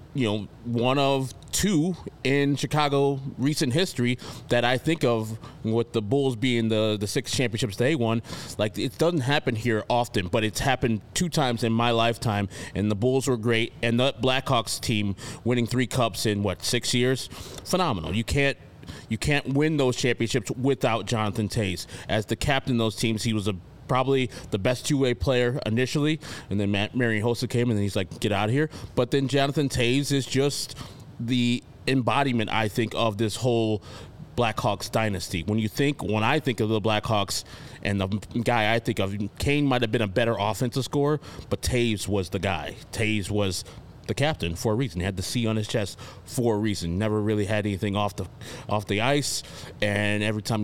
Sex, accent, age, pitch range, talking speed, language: male, American, 20-39, 105-130 Hz, 195 wpm, English